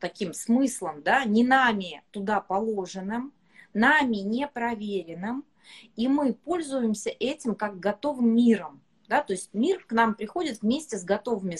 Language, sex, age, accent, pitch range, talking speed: Russian, female, 30-49, native, 205-270 Hz, 135 wpm